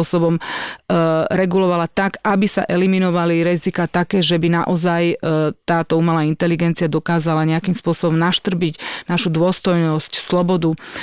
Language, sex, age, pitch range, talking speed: Slovak, female, 30-49, 165-185 Hz, 110 wpm